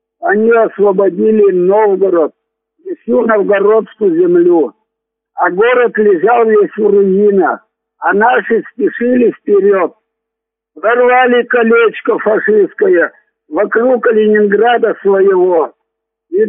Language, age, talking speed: Russian, 60-79, 85 wpm